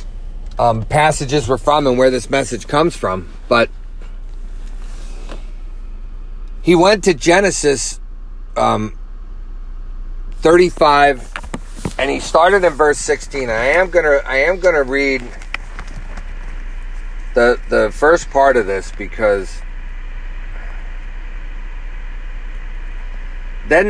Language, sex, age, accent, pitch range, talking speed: English, male, 40-59, American, 95-160 Hz, 95 wpm